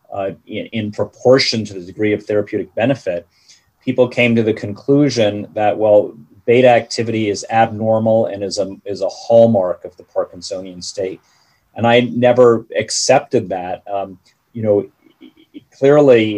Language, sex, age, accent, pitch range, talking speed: English, male, 40-59, American, 100-120 Hz, 145 wpm